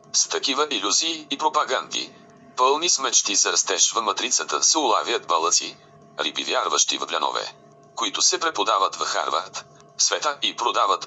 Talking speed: 140 wpm